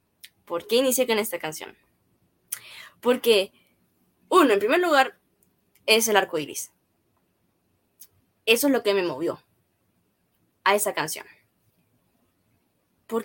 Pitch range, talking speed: 180-240 Hz, 115 wpm